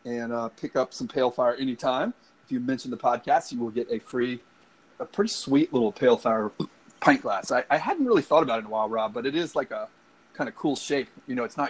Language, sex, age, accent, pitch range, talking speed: English, male, 30-49, American, 120-165 Hz, 255 wpm